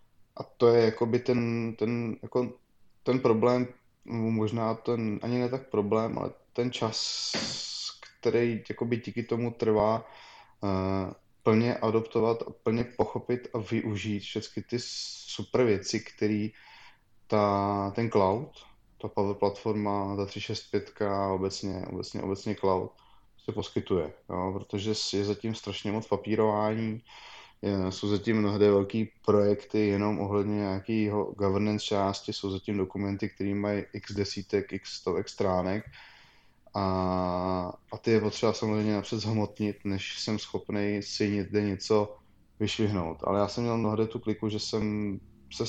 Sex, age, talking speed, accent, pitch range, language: male, 20-39, 135 wpm, native, 100-110 Hz, Czech